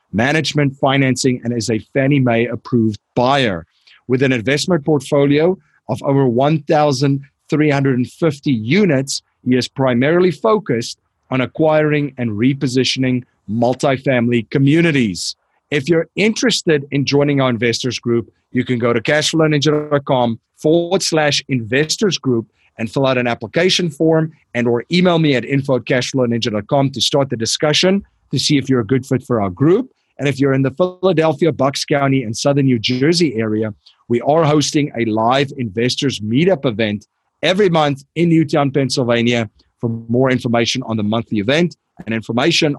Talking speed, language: 145 wpm, English